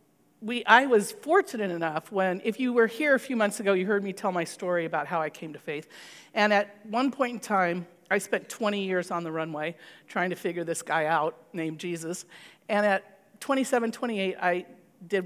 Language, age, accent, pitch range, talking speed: English, 50-69, American, 175-220 Hz, 205 wpm